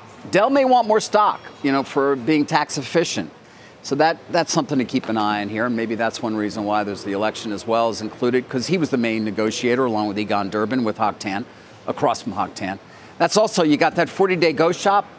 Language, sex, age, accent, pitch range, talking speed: English, male, 40-59, American, 115-165 Hz, 225 wpm